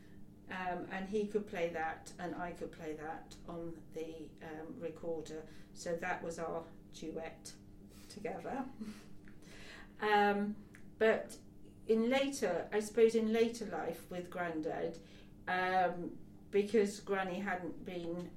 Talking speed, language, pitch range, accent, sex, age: 120 wpm, English, 165-210 Hz, British, female, 40-59